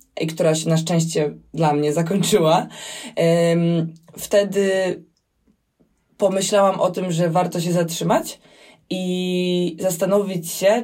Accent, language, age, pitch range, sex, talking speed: native, Polish, 20-39, 155-185 Hz, female, 105 wpm